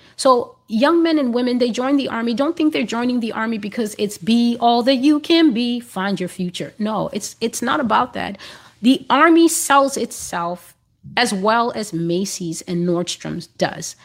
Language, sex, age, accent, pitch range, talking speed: English, female, 30-49, American, 195-275 Hz, 185 wpm